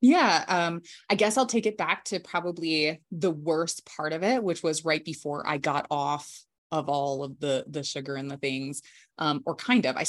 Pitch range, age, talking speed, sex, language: 165-185 Hz, 20-39, 215 wpm, female, English